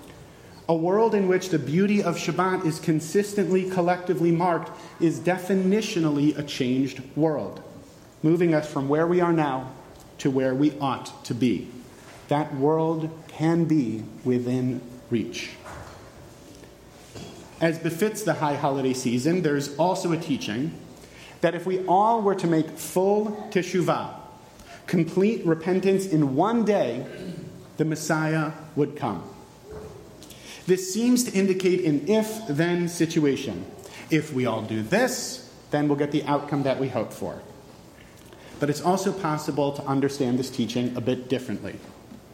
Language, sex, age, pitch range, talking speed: English, male, 30-49, 140-180 Hz, 135 wpm